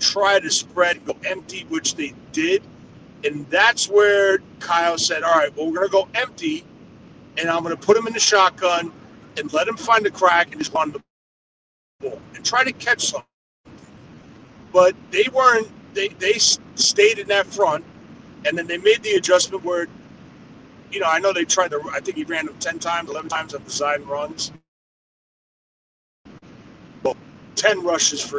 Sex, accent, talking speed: male, American, 185 wpm